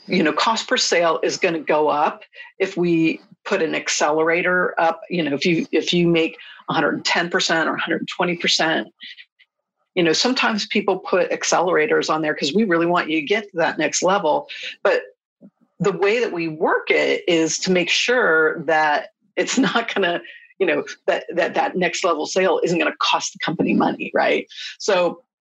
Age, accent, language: 50-69, American, English